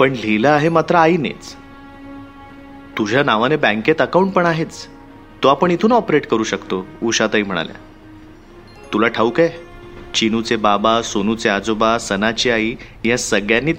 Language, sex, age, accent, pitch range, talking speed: Marathi, male, 30-49, native, 110-140 Hz, 125 wpm